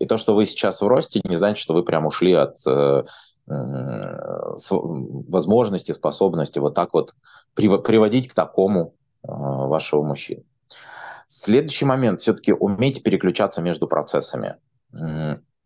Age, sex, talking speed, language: 20-39, male, 130 wpm, Russian